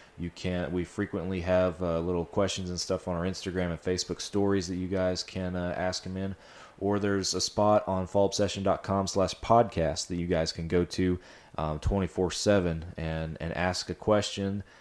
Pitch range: 80-95 Hz